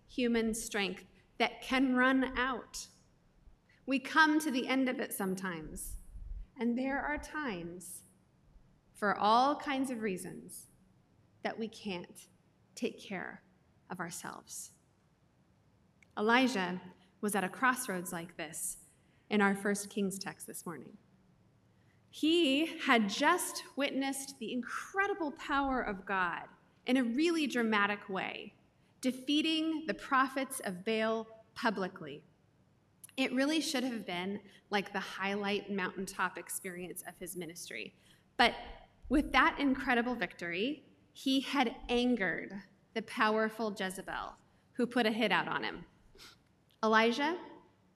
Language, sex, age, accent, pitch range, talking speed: English, female, 30-49, American, 195-265 Hz, 120 wpm